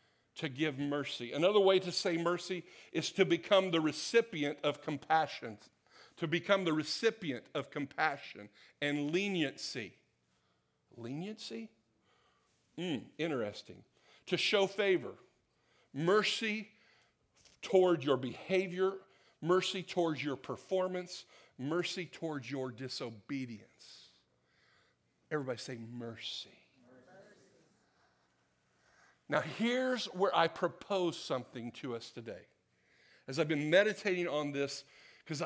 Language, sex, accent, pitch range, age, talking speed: English, male, American, 130-190 Hz, 50-69, 100 wpm